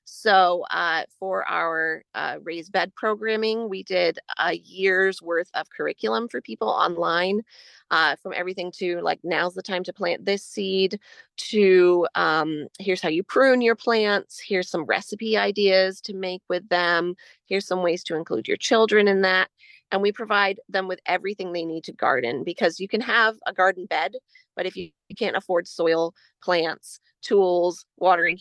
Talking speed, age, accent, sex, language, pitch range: 170 wpm, 30-49, American, female, English, 170-205 Hz